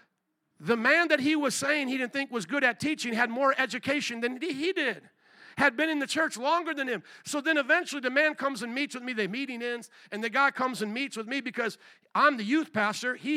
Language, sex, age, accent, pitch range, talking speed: English, male, 50-69, American, 185-275 Hz, 240 wpm